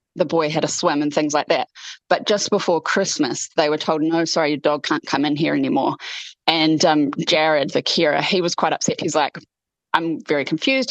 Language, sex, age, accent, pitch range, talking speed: English, female, 20-39, Australian, 150-195 Hz, 215 wpm